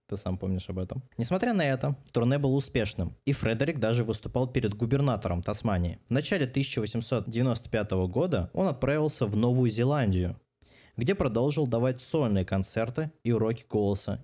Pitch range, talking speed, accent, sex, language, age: 110-145 Hz, 150 wpm, native, male, Russian, 20-39